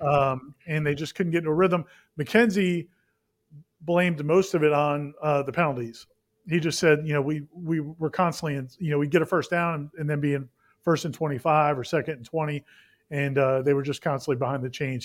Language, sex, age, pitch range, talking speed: English, male, 40-59, 145-180 Hz, 220 wpm